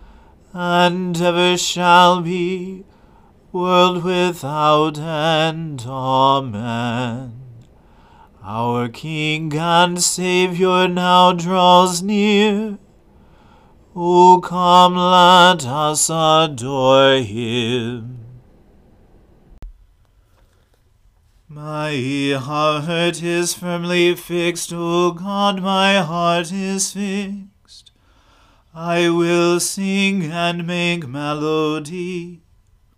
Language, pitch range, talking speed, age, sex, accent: English, 140-180 Hz, 70 wpm, 40-59, male, American